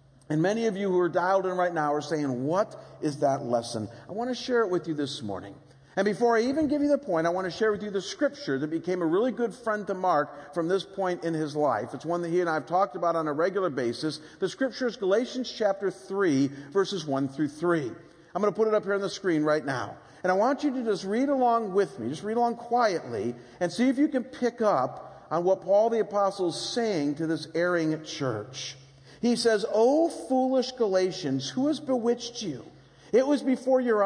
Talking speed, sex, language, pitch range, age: 240 wpm, male, English, 155-230 Hz, 50-69